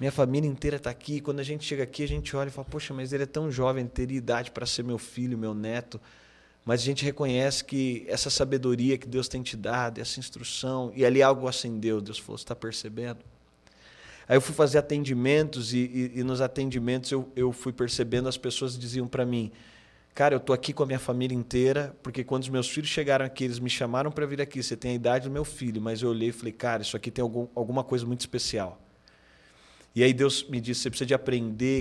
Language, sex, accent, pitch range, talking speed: Portuguese, male, Brazilian, 120-145 Hz, 230 wpm